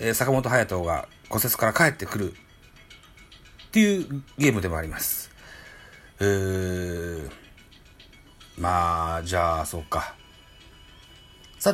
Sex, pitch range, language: male, 95-115 Hz, Japanese